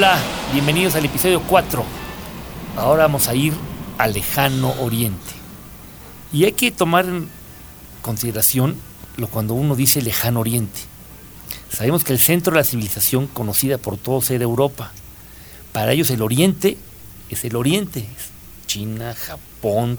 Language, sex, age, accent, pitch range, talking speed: Spanish, male, 50-69, Mexican, 110-150 Hz, 135 wpm